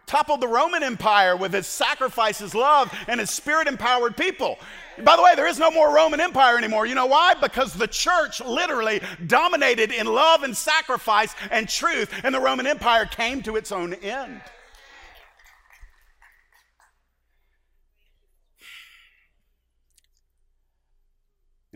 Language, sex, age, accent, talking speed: English, male, 50-69, American, 125 wpm